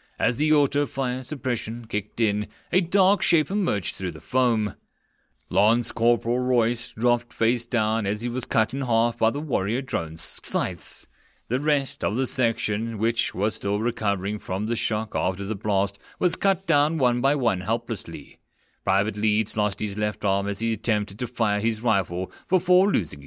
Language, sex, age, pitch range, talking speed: English, male, 30-49, 105-135 Hz, 175 wpm